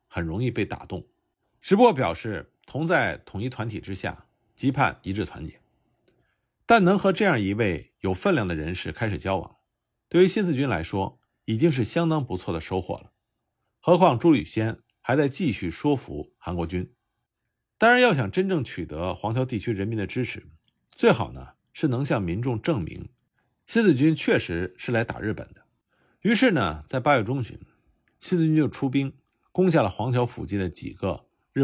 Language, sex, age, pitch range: Chinese, male, 50-69, 100-150 Hz